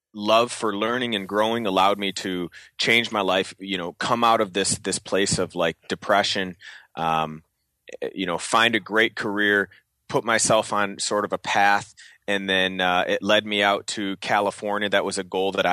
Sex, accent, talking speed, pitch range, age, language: male, American, 190 wpm, 90-105 Hz, 30-49, English